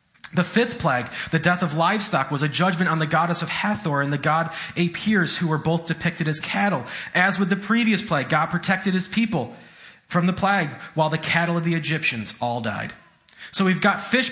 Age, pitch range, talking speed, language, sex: 30-49, 145-185 Hz, 205 wpm, English, male